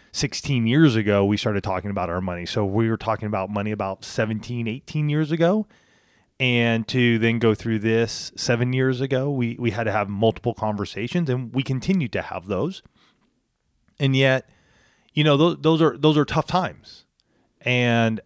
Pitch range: 105-130 Hz